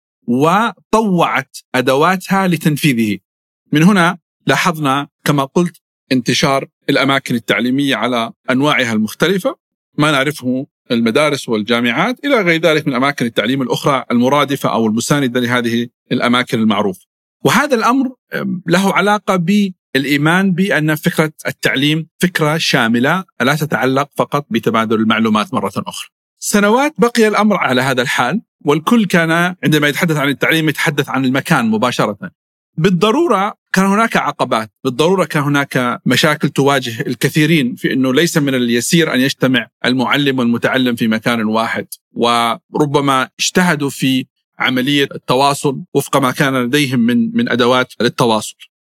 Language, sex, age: Arabic, male, 50-69